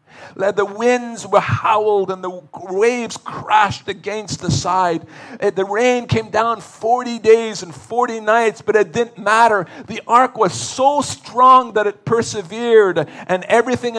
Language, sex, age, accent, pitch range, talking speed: English, male, 40-59, American, 135-200 Hz, 145 wpm